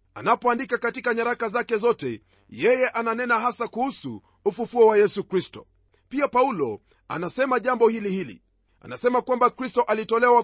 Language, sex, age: Swahili, male, 40-59